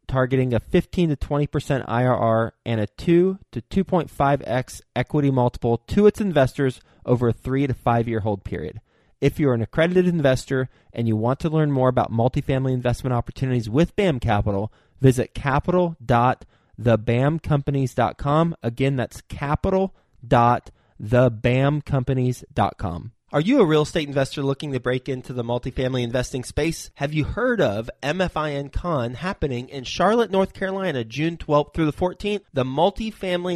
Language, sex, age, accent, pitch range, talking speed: English, male, 20-39, American, 125-155 Hz, 140 wpm